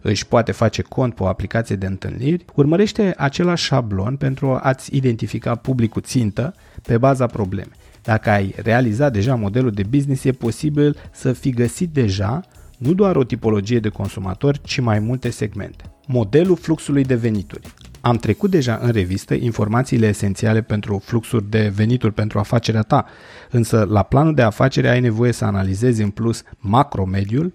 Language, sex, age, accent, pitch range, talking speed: Romanian, male, 30-49, native, 105-135 Hz, 160 wpm